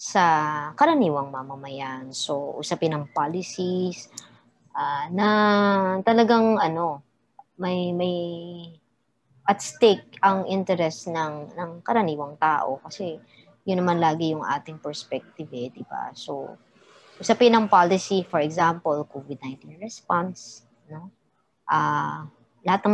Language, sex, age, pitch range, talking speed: Filipino, male, 20-39, 140-185 Hz, 115 wpm